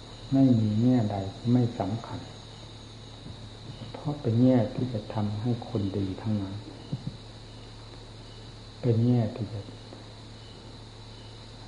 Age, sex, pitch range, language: 60-79, male, 105-120 Hz, Thai